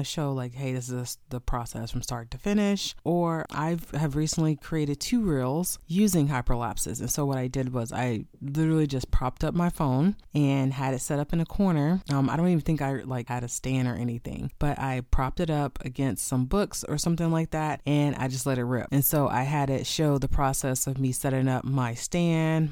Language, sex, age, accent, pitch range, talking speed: English, female, 20-39, American, 130-160 Hz, 225 wpm